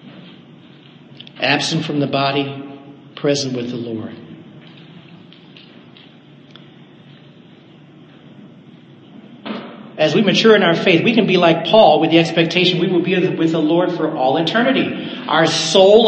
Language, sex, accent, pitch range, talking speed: English, male, American, 160-225 Hz, 125 wpm